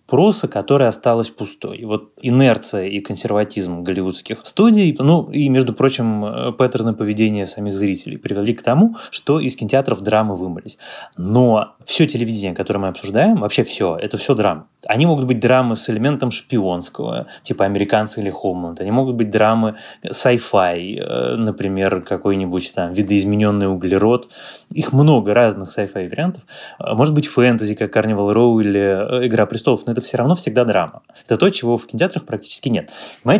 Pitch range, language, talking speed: 100-130 Hz, Russian, 155 wpm